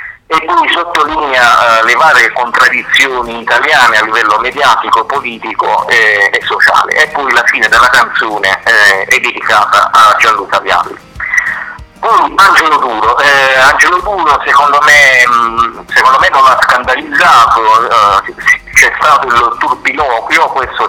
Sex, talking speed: male, 140 wpm